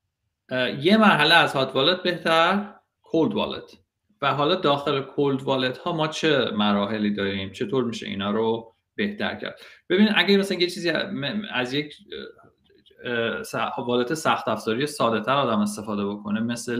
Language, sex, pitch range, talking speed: Persian, male, 105-150 Hz, 145 wpm